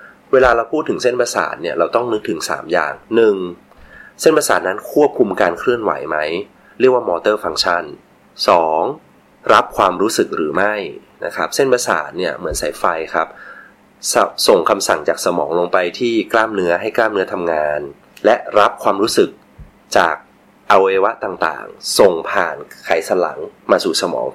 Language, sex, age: Thai, male, 20-39